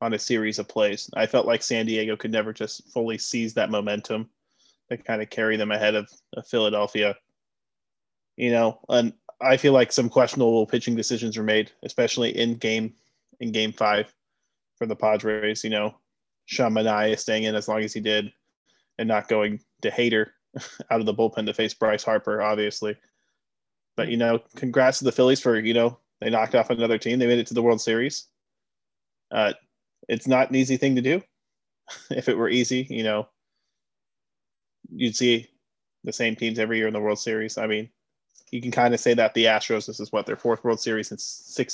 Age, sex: 20-39, male